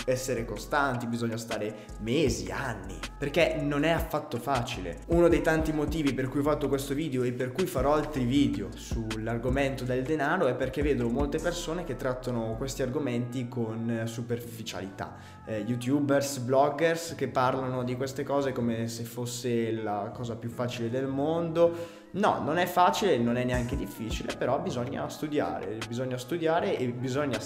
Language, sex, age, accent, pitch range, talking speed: Italian, male, 20-39, native, 115-140 Hz, 160 wpm